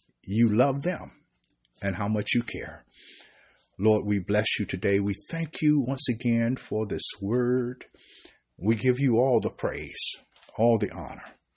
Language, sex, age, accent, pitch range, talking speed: English, male, 50-69, American, 95-125 Hz, 155 wpm